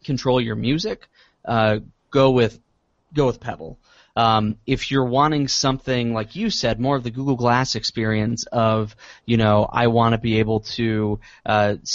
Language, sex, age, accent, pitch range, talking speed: English, male, 20-39, American, 110-135 Hz, 165 wpm